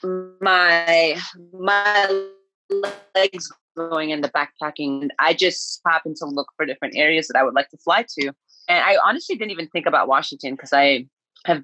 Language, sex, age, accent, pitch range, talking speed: English, female, 30-49, American, 145-185 Hz, 175 wpm